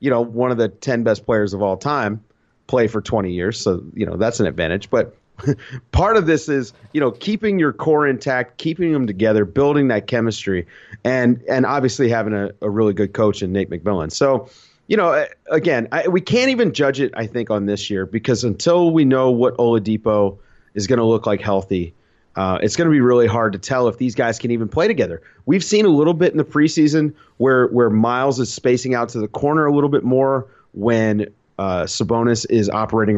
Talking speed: 215 wpm